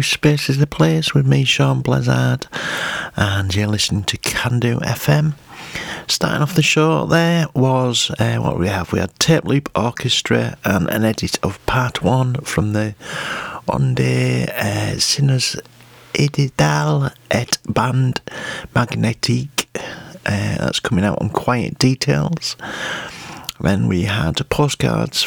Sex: male